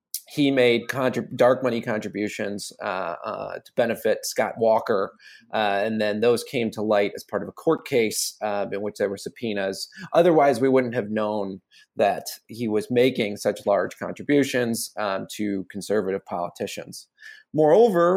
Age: 30-49